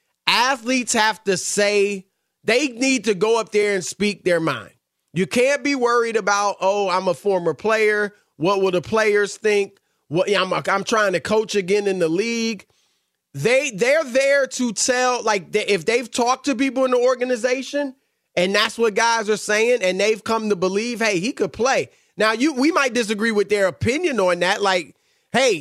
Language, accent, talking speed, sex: English, American, 185 wpm, male